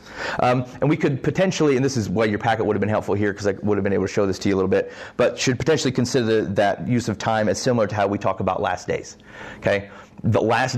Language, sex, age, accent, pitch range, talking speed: English, male, 30-49, American, 100-120 Hz, 280 wpm